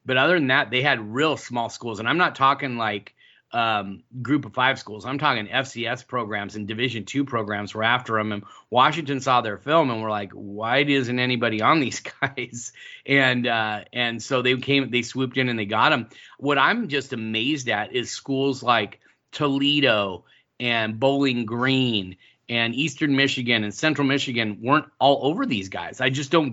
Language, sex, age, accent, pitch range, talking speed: English, male, 30-49, American, 115-140 Hz, 190 wpm